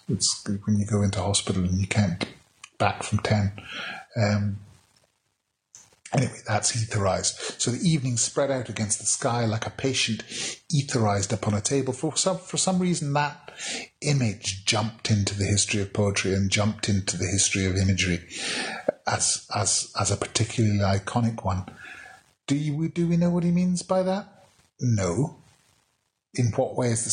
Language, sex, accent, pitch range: English, male, British, 105-140 Hz